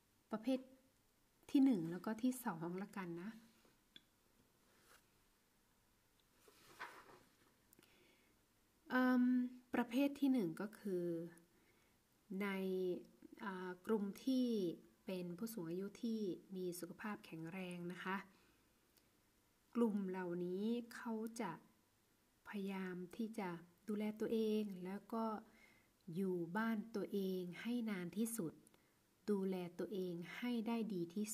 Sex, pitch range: female, 180-225 Hz